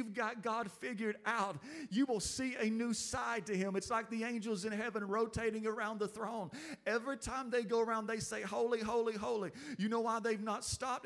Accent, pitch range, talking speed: American, 215-250 Hz, 205 wpm